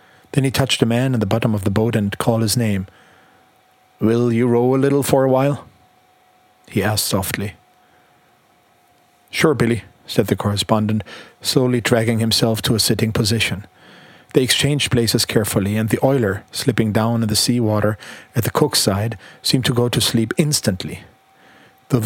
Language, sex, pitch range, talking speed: German, male, 110-130 Hz, 165 wpm